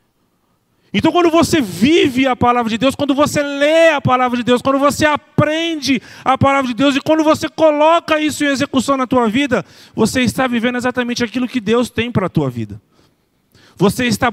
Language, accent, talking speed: Portuguese, Brazilian, 195 wpm